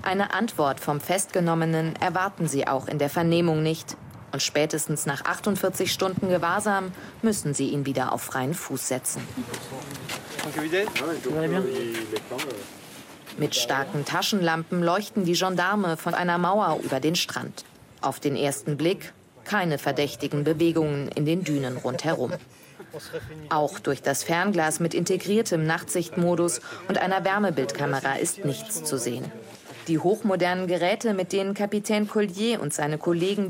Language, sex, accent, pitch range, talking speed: German, female, German, 145-195 Hz, 130 wpm